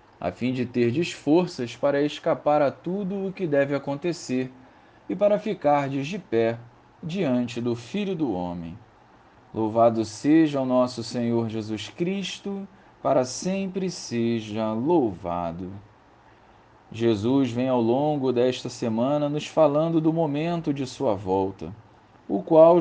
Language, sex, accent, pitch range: Portuguese, male, Brazilian, 115-165 Hz